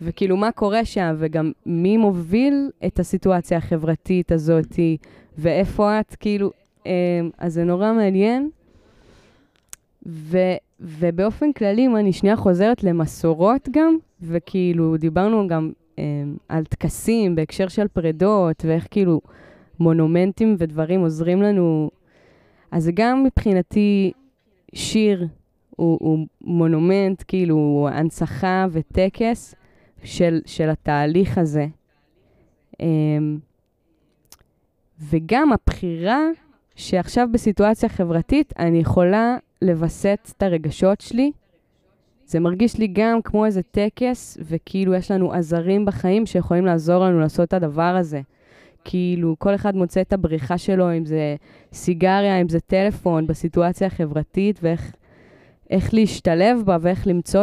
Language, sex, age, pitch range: Hebrew, female, 20-39, 165-205 Hz